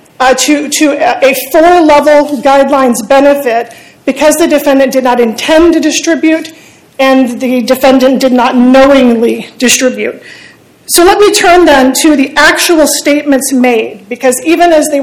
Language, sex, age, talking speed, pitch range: English, female, 40-59, 145 wpm, 250-300 Hz